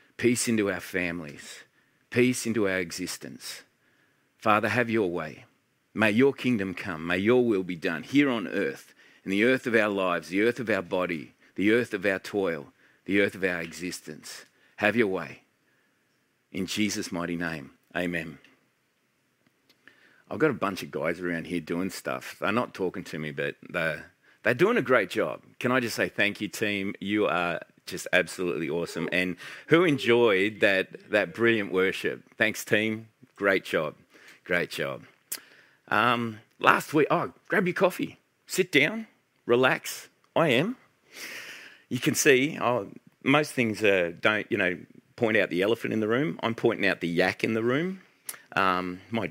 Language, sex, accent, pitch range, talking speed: English, male, Australian, 90-115 Hz, 170 wpm